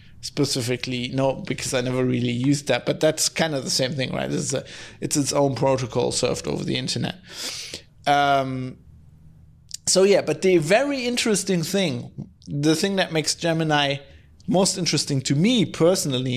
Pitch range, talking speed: 130-165 Hz, 155 wpm